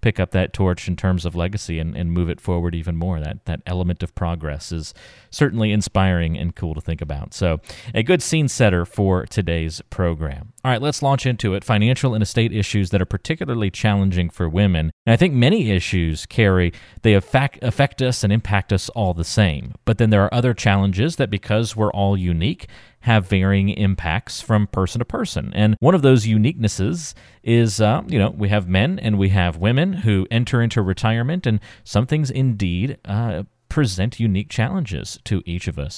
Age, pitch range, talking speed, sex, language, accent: 30-49, 90-115 Hz, 195 wpm, male, English, American